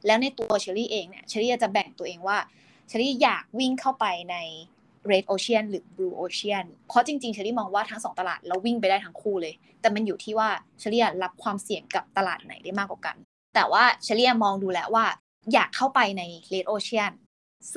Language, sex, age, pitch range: Thai, female, 20-39, 190-235 Hz